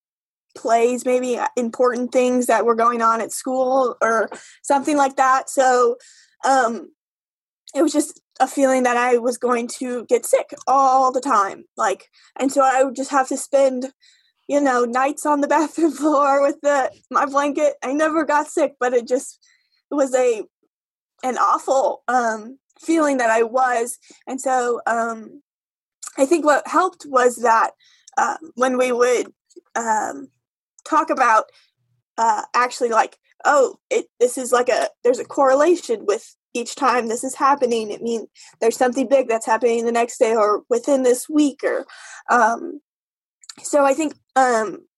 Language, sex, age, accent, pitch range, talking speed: English, female, 20-39, American, 245-300 Hz, 165 wpm